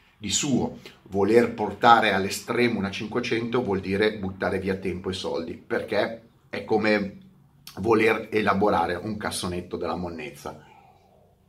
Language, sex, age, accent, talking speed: Italian, male, 30-49, native, 120 wpm